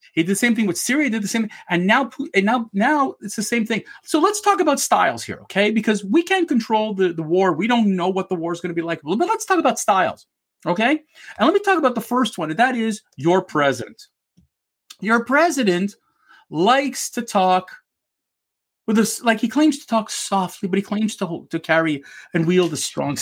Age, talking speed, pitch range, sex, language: 40-59, 225 wpm, 195-320 Hz, male, English